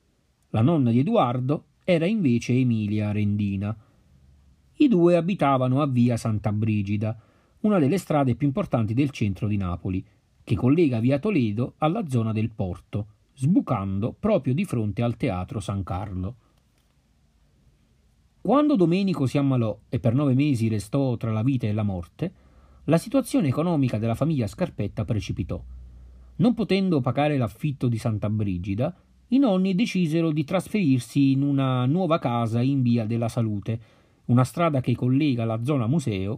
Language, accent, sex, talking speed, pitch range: Italian, native, male, 145 wpm, 105-145 Hz